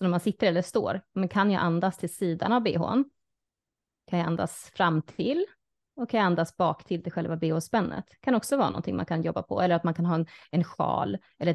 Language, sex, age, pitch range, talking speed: Swedish, female, 20-39, 165-205 Hz, 235 wpm